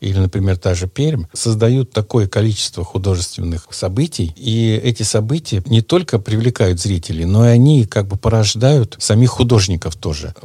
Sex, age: male, 50-69